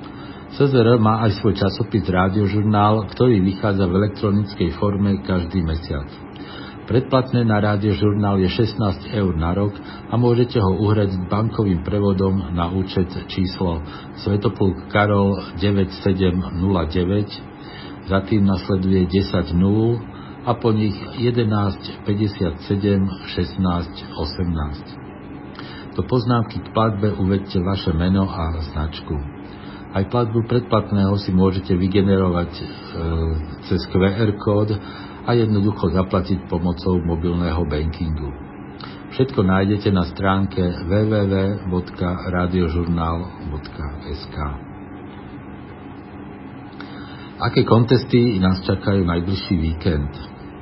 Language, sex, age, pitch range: Slovak, male, 60-79, 90-105 Hz